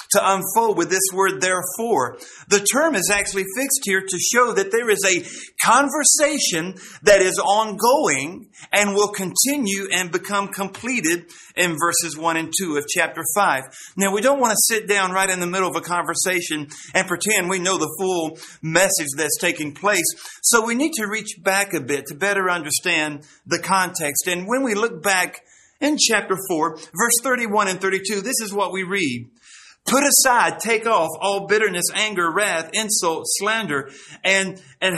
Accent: American